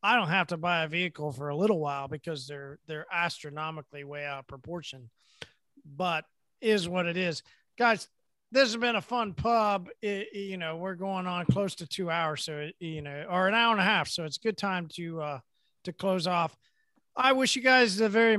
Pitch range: 160-200 Hz